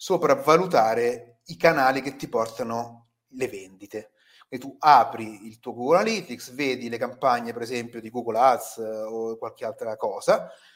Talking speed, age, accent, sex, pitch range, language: 150 wpm, 30-49, native, male, 125-205 Hz, Italian